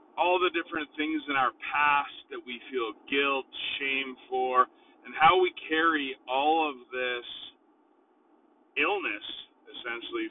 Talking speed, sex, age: 115 wpm, male, 30-49